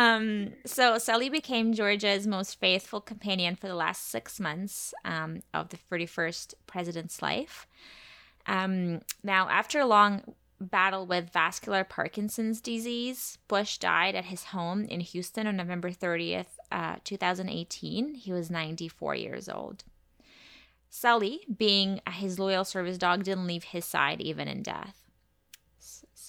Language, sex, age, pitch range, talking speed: English, female, 20-39, 170-205 Hz, 135 wpm